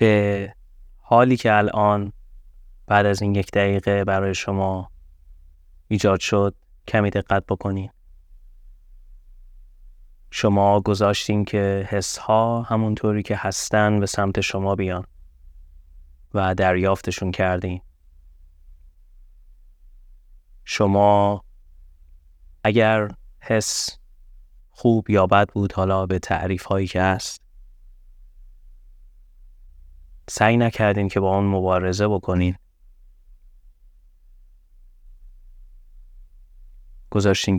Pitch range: 70-100 Hz